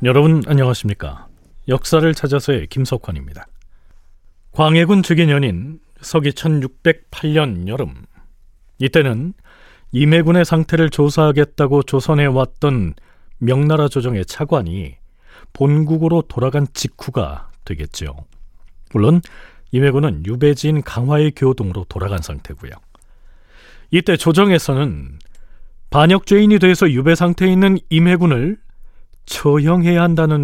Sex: male